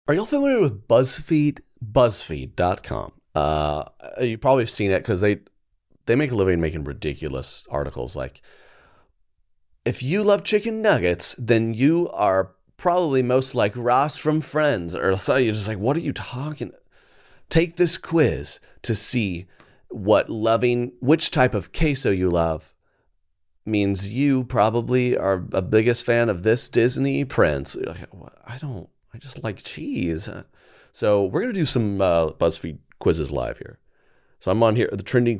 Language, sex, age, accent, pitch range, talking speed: English, male, 30-49, American, 85-135 Hz, 160 wpm